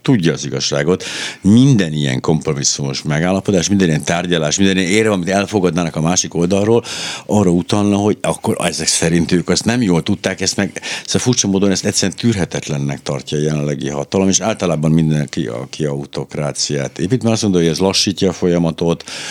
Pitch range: 80-100 Hz